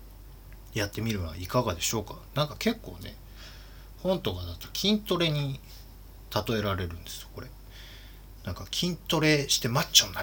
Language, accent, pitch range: Japanese, native, 95-145 Hz